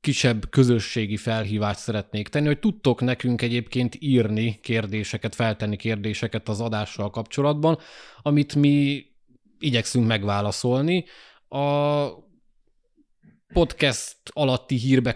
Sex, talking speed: male, 95 wpm